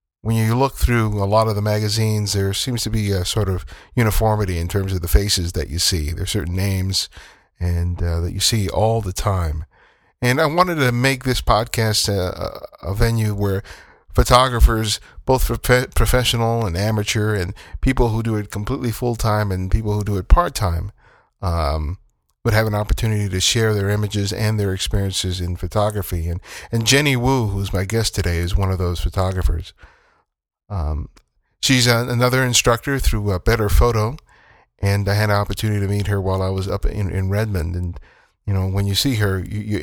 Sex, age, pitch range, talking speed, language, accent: male, 50-69, 95-115 Hz, 190 wpm, English, American